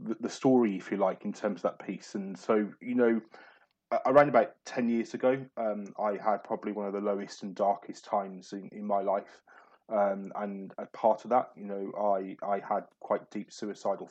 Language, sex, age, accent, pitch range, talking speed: English, male, 20-39, British, 100-110 Hz, 205 wpm